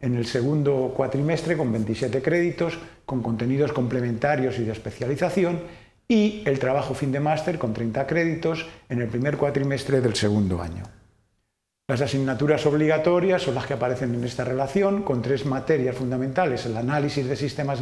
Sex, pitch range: male, 120-155 Hz